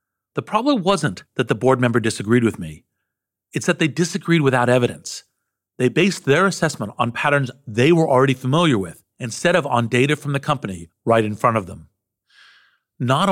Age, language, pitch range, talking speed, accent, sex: 50-69, English, 105-140 Hz, 180 wpm, American, male